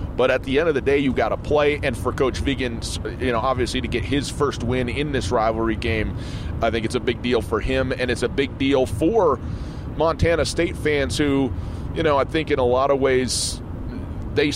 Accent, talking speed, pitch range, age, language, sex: American, 225 wpm, 95-140 Hz, 30-49, English, male